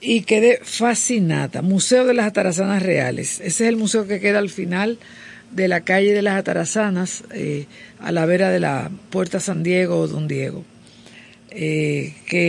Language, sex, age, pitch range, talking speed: Spanish, female, 50-69, 175-215 Hz, 175 wpm